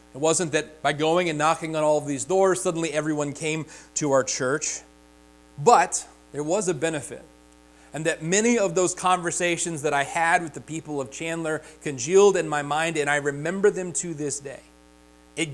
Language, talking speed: English, 190 wpm